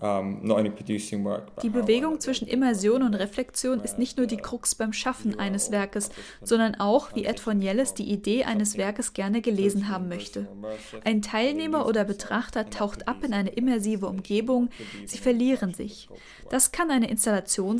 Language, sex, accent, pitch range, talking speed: German, female, German, 200-250 Hz, 155 wpm